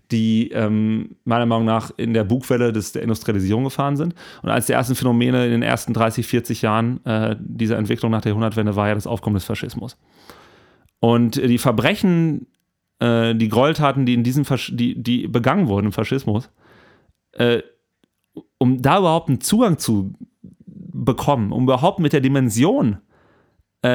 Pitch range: 115-135 Hz